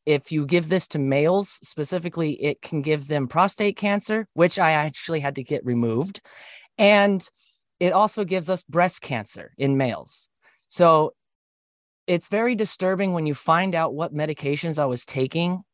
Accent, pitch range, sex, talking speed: American, 140-180 Hz, male, 160 wpm